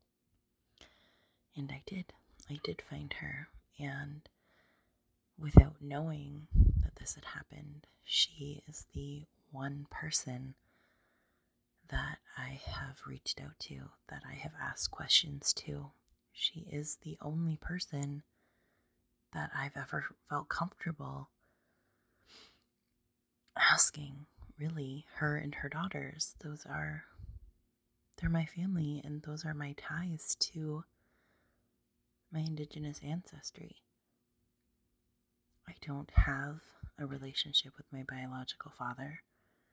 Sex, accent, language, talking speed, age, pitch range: female, American, English, 105 wpm, 20-39, 135-155 Hz